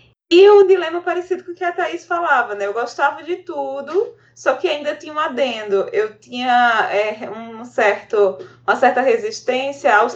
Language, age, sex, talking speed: Portuguese, 20-39, female, 185 wpm